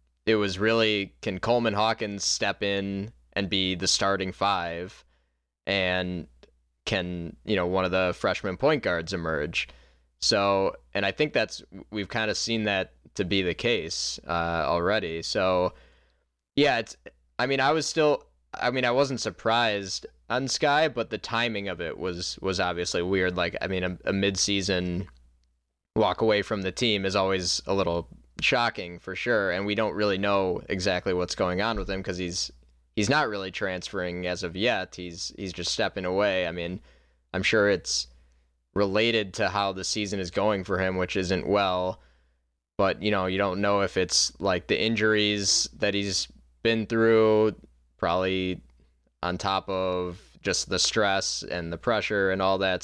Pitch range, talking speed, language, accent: 85-100 Hz, 170 wpm, English, American